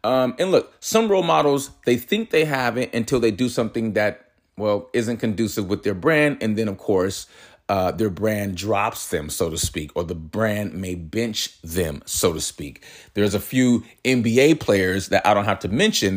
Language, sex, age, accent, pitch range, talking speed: English, male, 30-49, American, 100-125 Hz, 200 wpm